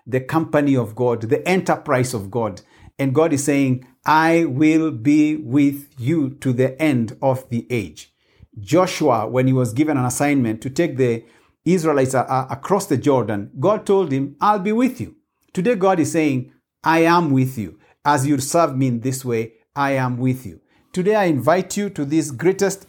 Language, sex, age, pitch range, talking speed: English, male, 50-69, 130-160 Hz, 185 wpm